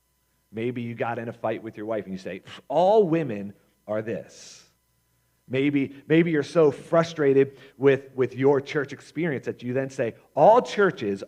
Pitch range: 95-140 Hz